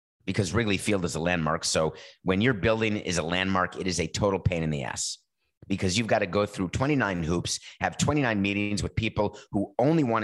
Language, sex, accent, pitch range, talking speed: English, male, American, 95-120 Hz, 215 wpm